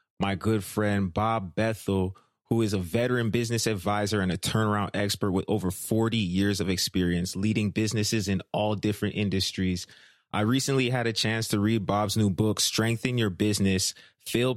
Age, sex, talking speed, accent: 20-39, male, 170 wpm, American